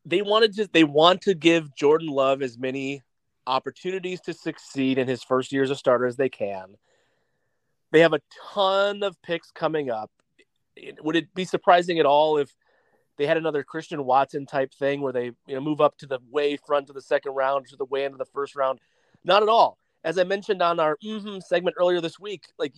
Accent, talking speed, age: American, 210 wpm, 30-49